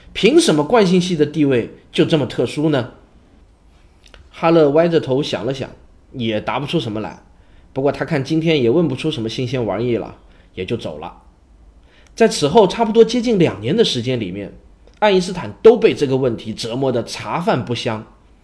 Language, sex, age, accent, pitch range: Chinese, male, 20-39, native, 110-160 Hz